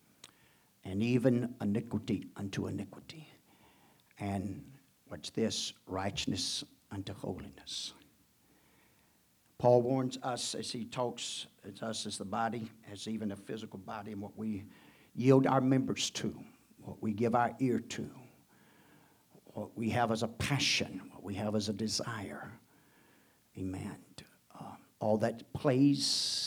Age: 60-79